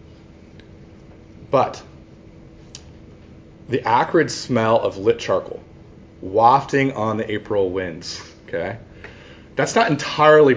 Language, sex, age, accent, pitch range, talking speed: English, male, 30-49, American, 105-145 Hz, 90 wpm